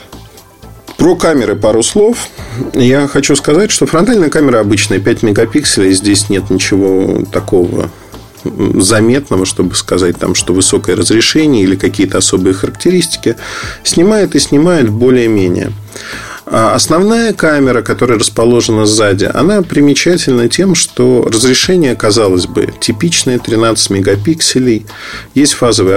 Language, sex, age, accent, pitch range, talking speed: Russian, male, 40-59, native, 105-140 Hz, 110 wpm